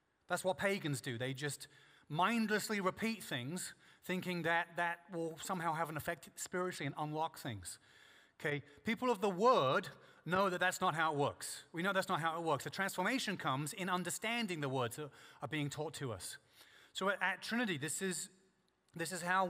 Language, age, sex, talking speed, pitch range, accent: English, 30-49, male, 190 wpm, 150-185 Hz, British